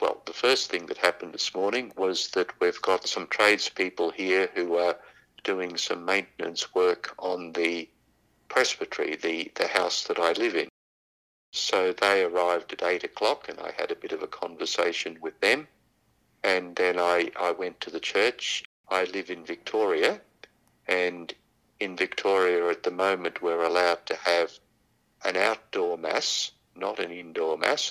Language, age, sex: English, 60-79, male